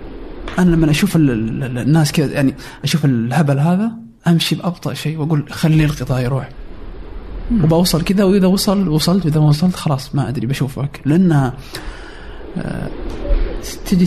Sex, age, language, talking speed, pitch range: male, 20-39, Arabic, 130 wpm, 135-175 Hz